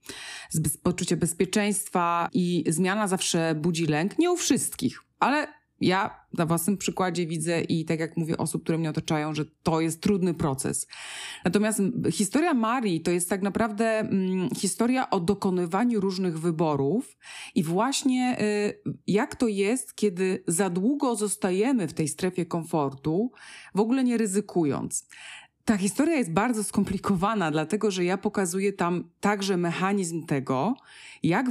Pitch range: 165-210 Hz